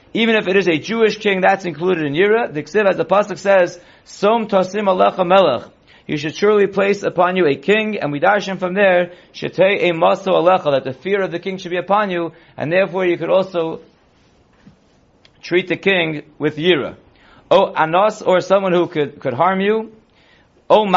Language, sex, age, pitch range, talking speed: English, male, 30-49, 160-195 Hz, 200 wpm